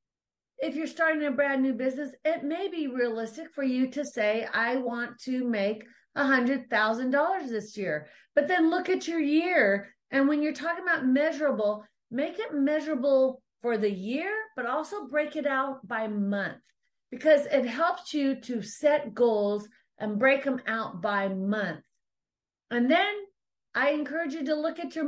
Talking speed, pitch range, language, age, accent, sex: 165 wpm, 215-295 Hz, English, 40-59, American, female